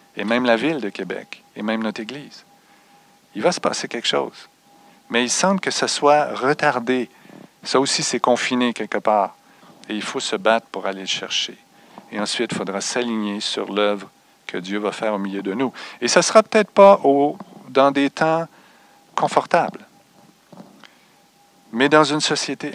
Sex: male